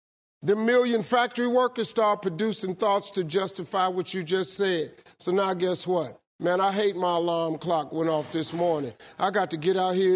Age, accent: 50-69, American